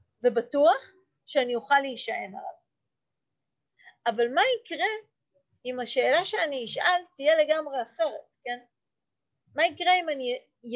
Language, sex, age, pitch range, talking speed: Hebrew, female, 30-49, 225-325 Hz, 110 wpm